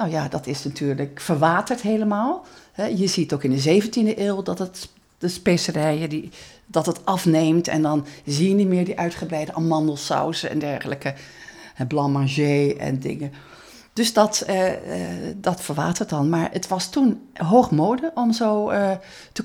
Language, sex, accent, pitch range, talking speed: Dutch, female, Dutch, 155-215 Hz, 165 wpm